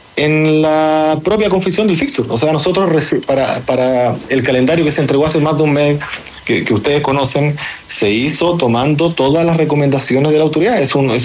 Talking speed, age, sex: 185 wpm, 40-59, male